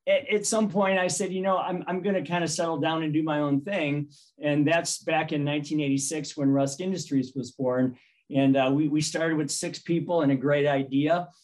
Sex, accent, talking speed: male, American, 220 wpm